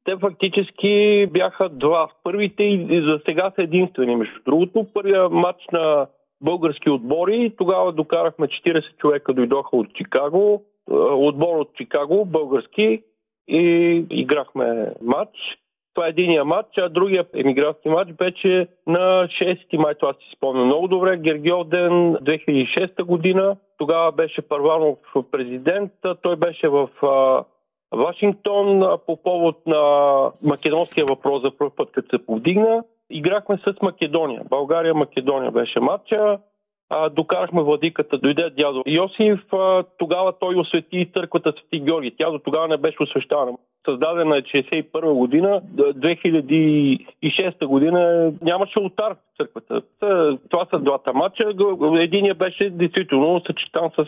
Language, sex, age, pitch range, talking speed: Bulgarian, male, 40-59, 150-190 Hz, 130 wpm